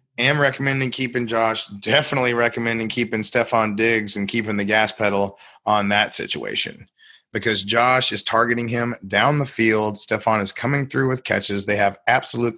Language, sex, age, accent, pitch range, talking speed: English, male, 30-49, American, 100-120 Hz, 165 wpm